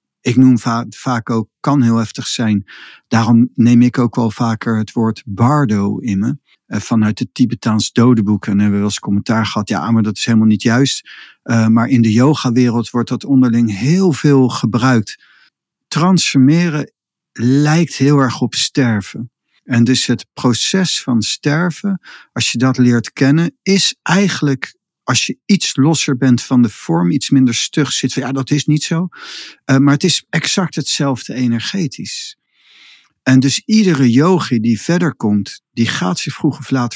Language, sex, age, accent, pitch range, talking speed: Dutch, male, 50-69, Dutch, 115-145 Hz, 170 wpm